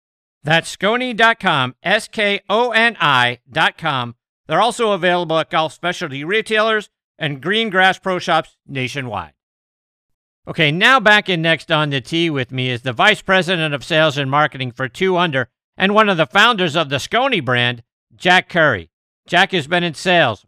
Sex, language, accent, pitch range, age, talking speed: male, English, American, 130-185 Hz, 50-69, 150 wpm